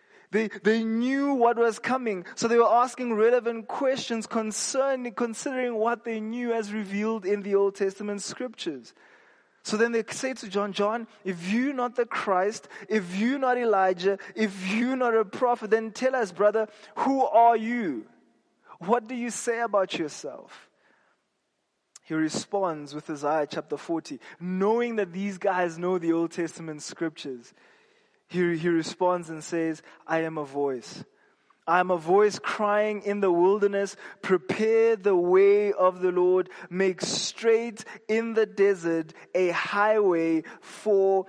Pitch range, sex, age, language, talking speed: 180-225 Hz, male, 20-39, English, 150 wpm